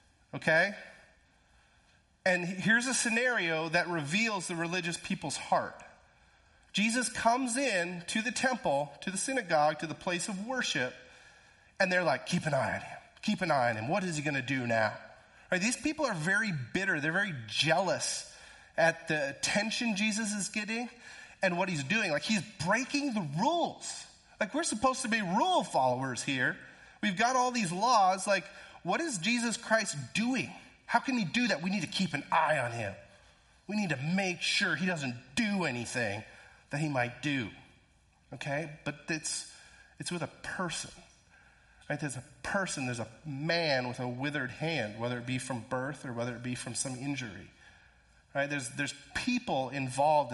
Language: English